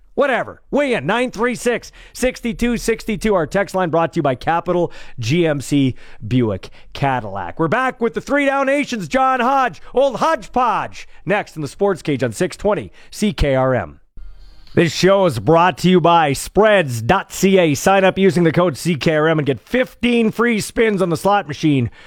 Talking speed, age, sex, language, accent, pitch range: 150 wpm, 40-59, male, English, American, 130-200 Hz